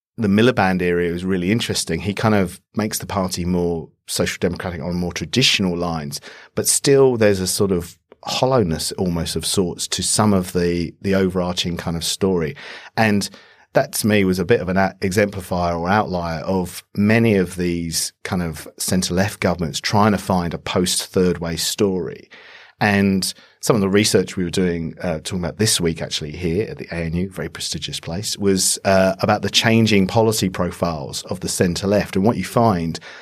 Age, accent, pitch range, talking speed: 40-59, British, 85-100 Hz, 180 wpm